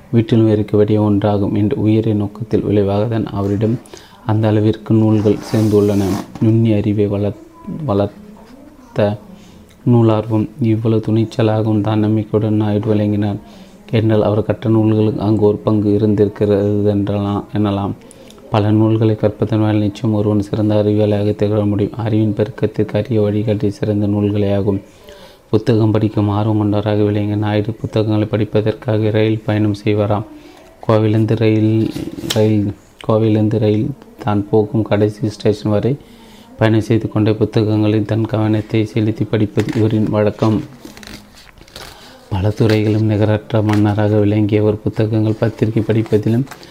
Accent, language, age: native, Tamil, 30-49